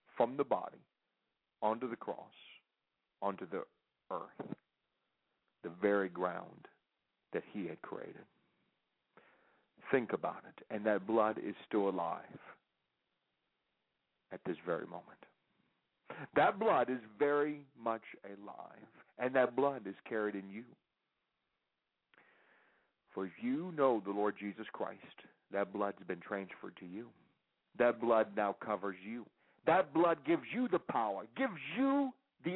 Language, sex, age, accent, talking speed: English, male, 50-69, American, 130 wpm